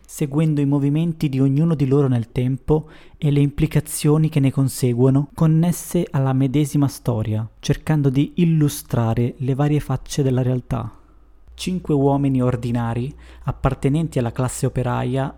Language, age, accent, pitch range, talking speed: Italian, 20-39, native, 120-145 Hz, 135 wpm